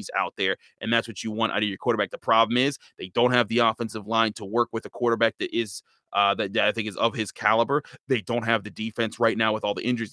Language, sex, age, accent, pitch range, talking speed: English, male, 20-39, American, 105-120 Hz, 275 wpm